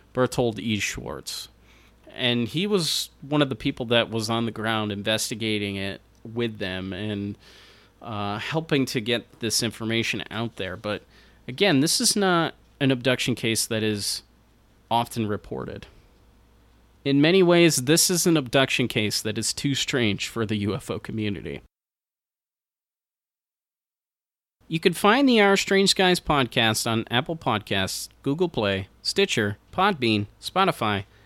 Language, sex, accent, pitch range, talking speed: English, male, American, 105-160 Hz, 140 wpm